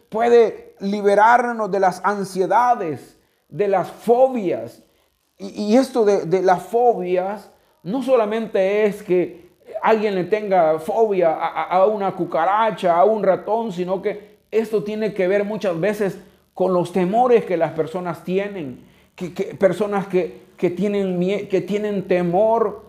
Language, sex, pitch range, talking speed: Spanish, male, 180-225 Hz, 135 wpm